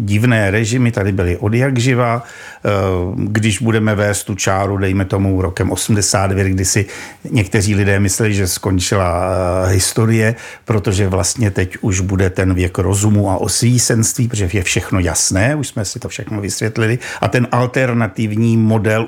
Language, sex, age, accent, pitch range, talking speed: Czech, male, 60-79, native, 100-125 Hz, 145 wpm